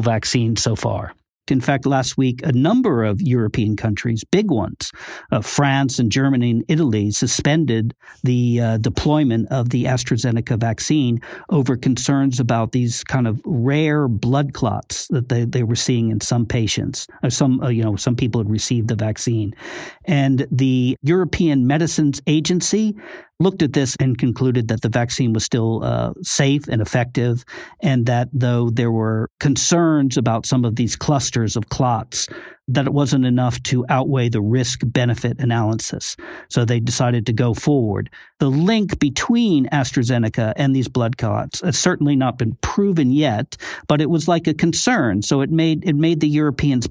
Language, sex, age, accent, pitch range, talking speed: English, male, 50-69, American, 115-145 Hz, 165 wpm